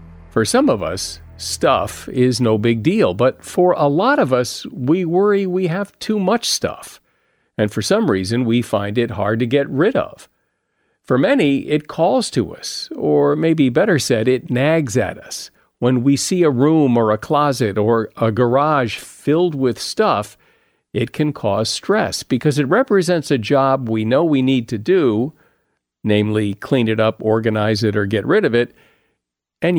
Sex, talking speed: male, 180 wpm